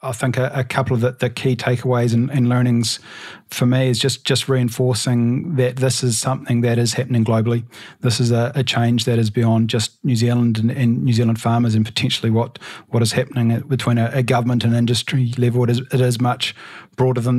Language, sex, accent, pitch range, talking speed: English, male, Australian, 120-135 Hz, 215 wpm